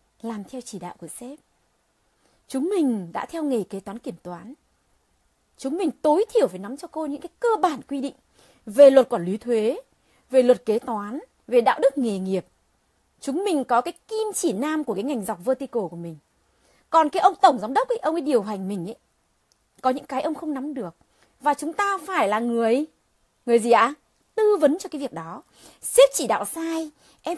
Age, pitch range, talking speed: 20-39, 220-305 Hz, 215 wpm